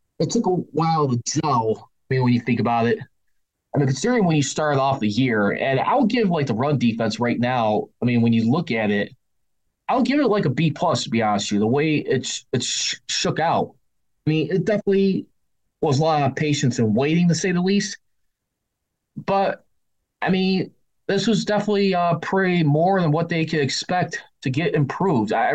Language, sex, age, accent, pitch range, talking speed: English, male, 20-39, American, 120-165 Hz, 215 wpm